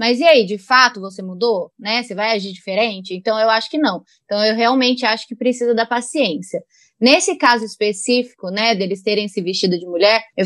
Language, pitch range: Portuguese, 210-265 Hz